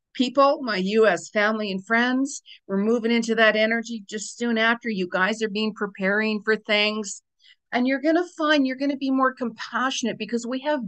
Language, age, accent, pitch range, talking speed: English, 50-69, American, 195-245 Hz, 195 wpm